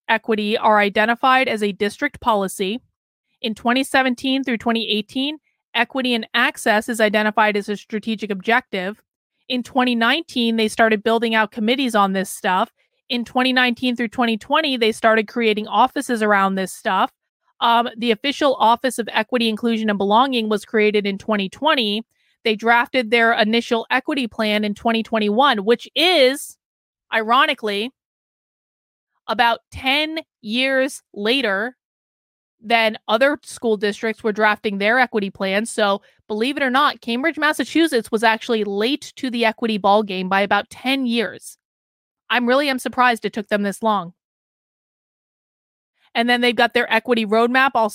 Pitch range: 215-255 Hz